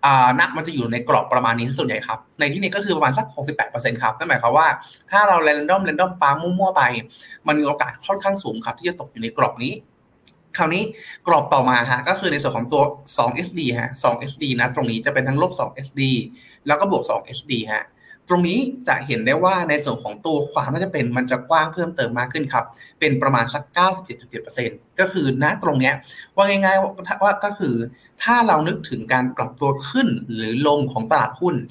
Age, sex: 20-39, male